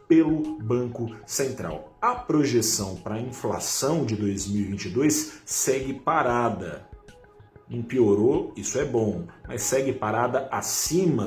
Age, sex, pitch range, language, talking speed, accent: 40-59, male, 105-130 Hz, Portuguese, 105 wpm, Brazilian